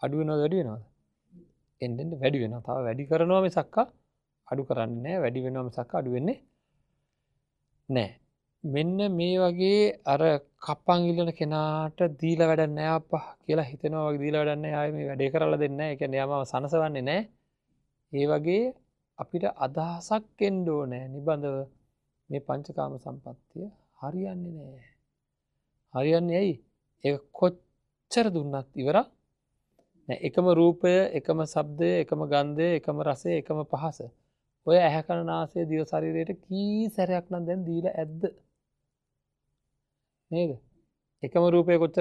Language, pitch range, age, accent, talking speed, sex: English, 140-175 Hz, 30-49, Indian, 90 wpm, male